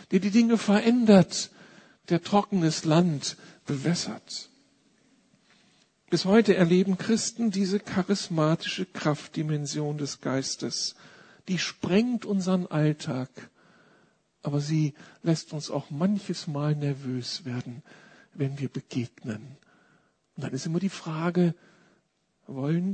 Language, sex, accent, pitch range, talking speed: German, male, German, 155-210 Hz, 105 wpm